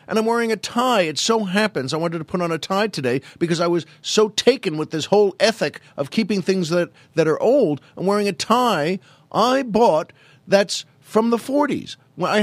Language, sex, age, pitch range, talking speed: English, male, 50-69, 135-175 Hz, 210 wpm